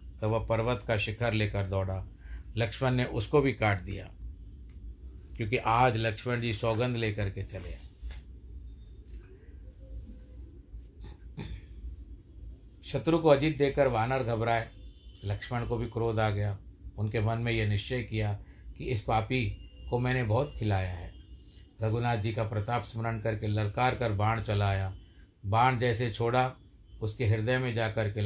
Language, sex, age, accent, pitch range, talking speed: Hindi, male, 50-69, native, 95-120 Hz, 140 wpm